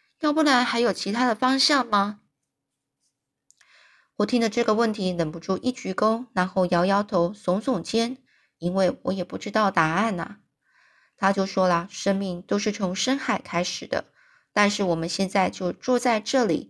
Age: 20-39